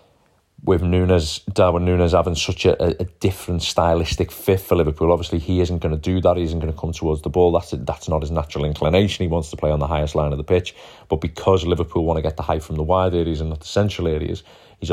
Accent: British